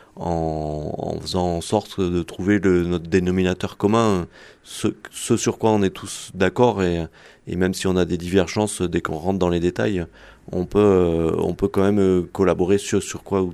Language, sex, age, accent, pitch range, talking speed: French, male, 30-49, French, 85-100 Hz, 195 wpm